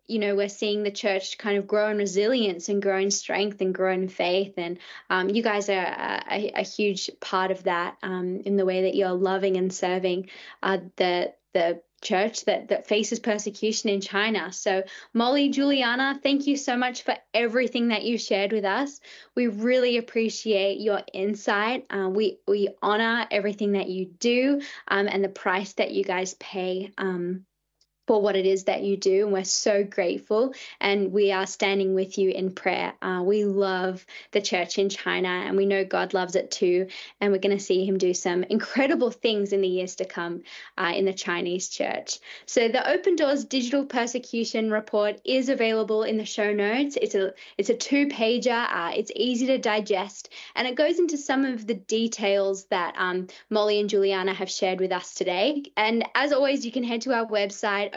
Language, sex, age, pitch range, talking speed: English, female, 10-29, 190-235 Hz, 195 wpm